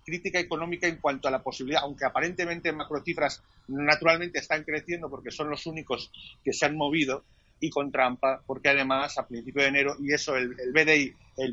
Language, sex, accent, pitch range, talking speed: Spanish, male, Spanish, 130-155 Hz, 195 wpm